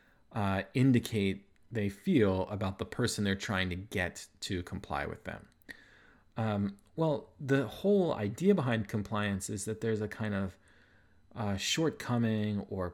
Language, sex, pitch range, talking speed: English, male, 95-115 Hz, 145 wpm